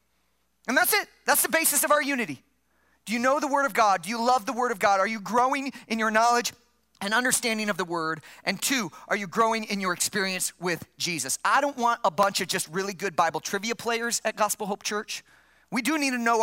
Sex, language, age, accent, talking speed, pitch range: male, English, 40-59, American, 235 wpm, 200-275 Hz